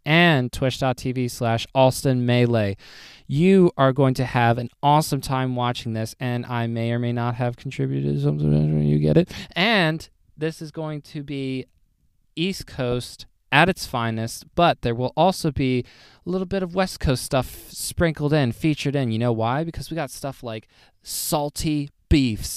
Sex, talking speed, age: male, 170 wpm, 20-39